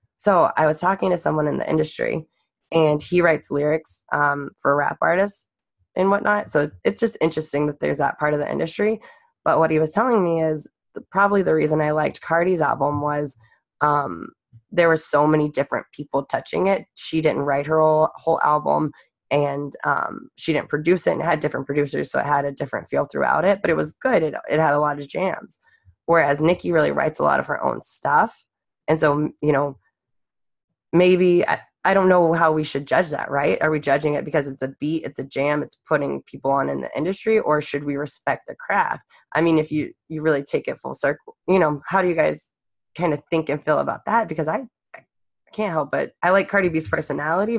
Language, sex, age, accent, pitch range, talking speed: English, female, 20-39, American, 145-170 Hz, 220 wpm